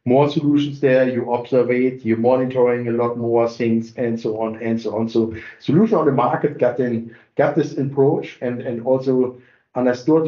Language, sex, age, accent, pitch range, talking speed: English, male, 50-69, German, 120-145 Hz, 195 wpm